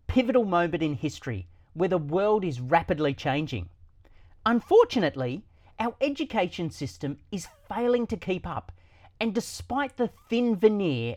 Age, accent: 40-59, Australian